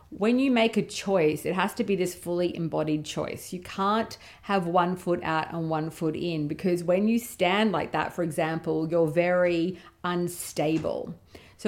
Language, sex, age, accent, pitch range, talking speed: English, female, 40-59, Australian, 155-190 Hz, 180 wpm